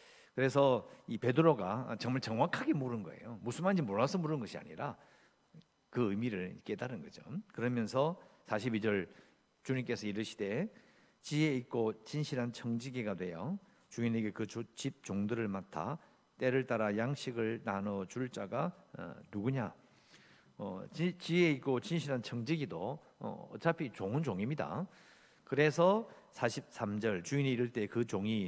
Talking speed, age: 110 wpm, 50-69